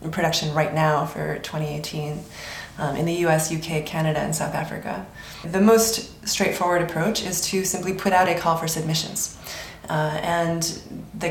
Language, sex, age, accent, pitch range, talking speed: English, female, 20-39, American, 165-195 Hz, 165 wpm